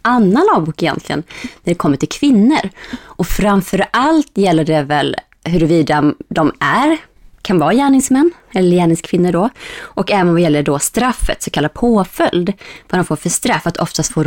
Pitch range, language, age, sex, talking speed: 160-215 Hz, English, 20-39, female, 165 wpm